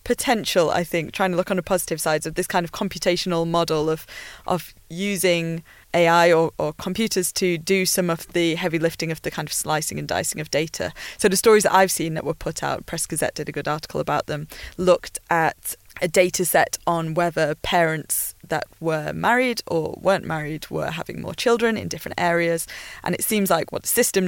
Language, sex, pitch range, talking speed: English, female, 155-190 Hz, 210 wpm